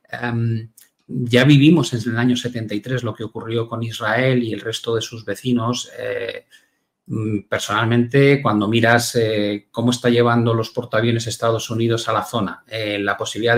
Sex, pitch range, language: male, 115-140 Hz, Spanish